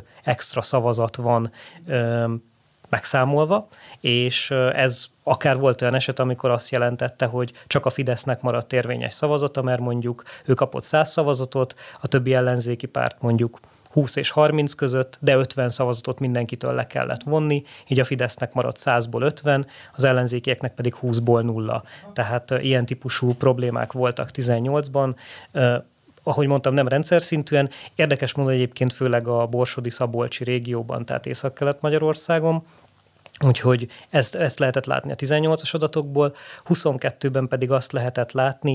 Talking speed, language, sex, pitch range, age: 135 wpm, Hungarian, male, 125-140 Hz, 30-49